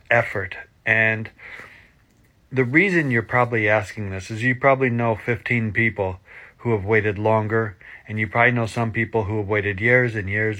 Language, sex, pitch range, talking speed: English, male, 100-115 Hz, 170 wpm